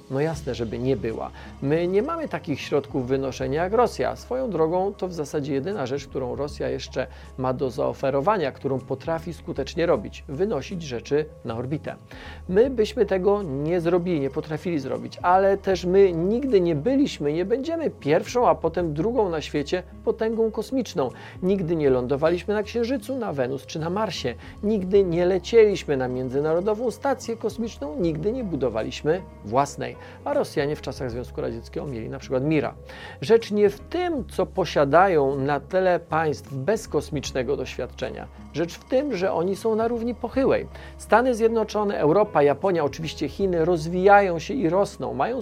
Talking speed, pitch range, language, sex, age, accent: 160 wpm, 145-220 Hz, Polish, male, 40-59, native